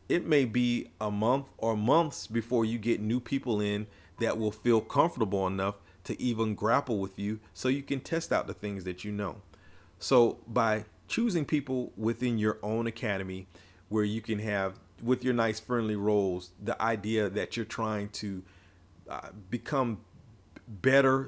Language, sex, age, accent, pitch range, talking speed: English, male, 40-59, American, 95-120 Hz, 165 wpm